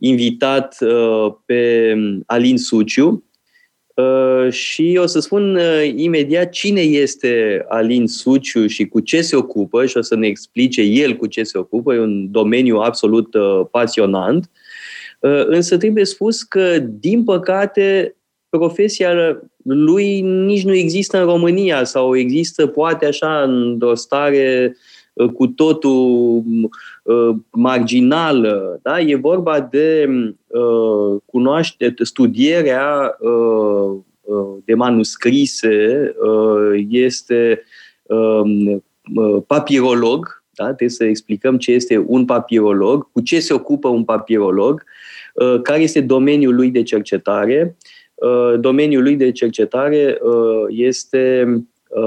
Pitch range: 115-165 Hz